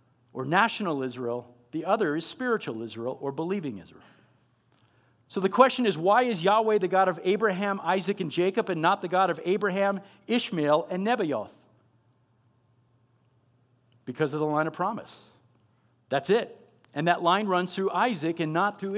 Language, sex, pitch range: English, male, 125-210 Hz